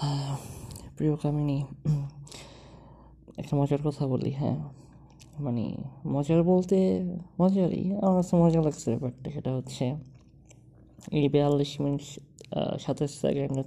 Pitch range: 135-150 Hz